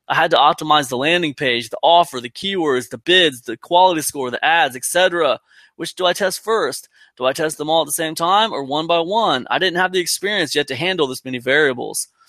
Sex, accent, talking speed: male, American, 235 wpm